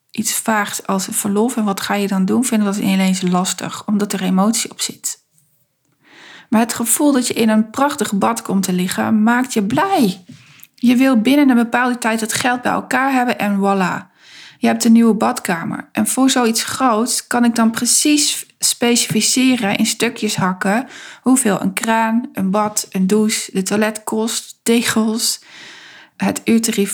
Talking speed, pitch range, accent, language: 170 wpm, 195-245 Hz, Dutch, Dutch